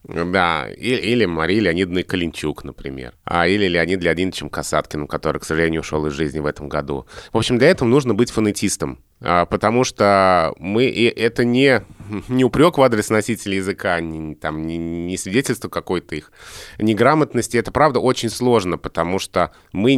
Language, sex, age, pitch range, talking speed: Russian, male, 20-39, 85-115 Hz, 160 wpm